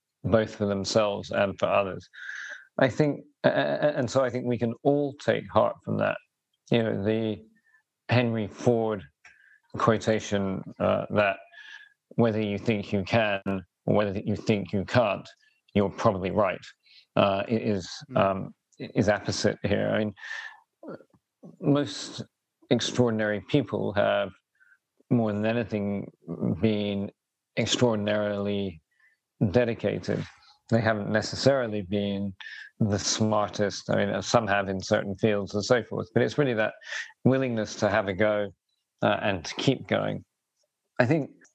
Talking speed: 130 wpm